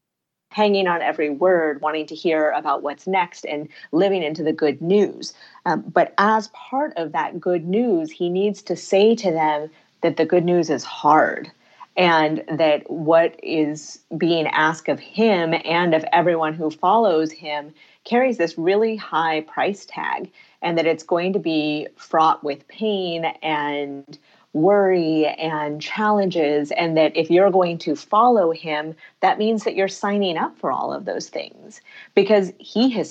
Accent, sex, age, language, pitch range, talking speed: American, female, 30-49, English, 155-190 Hz, 165 wpm